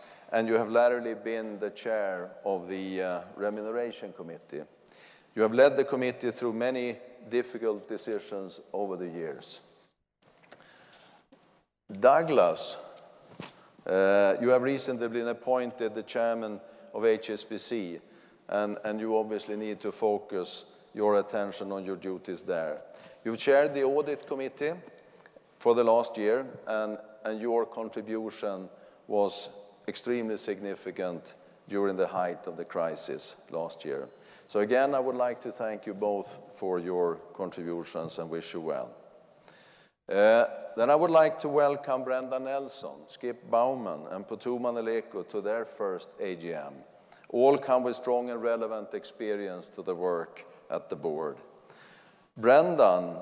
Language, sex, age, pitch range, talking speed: English, male, 50-69, 105-125 Hz, 135 wpm